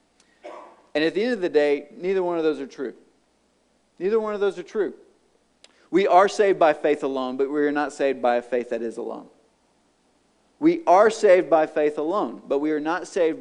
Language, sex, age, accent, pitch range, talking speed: English, male, 40-59, American, 140-210 Hz, 210 wpm